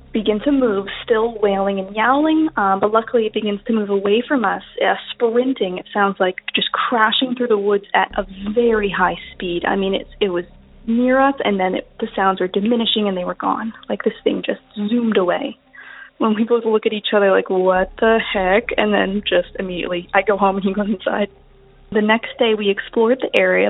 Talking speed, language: 210 wpm, English